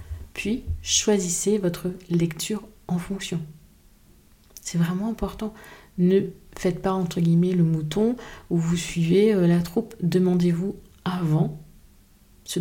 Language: French